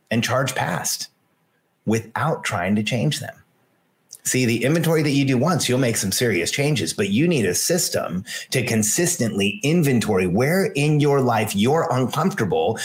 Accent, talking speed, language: American, 160 wpm, English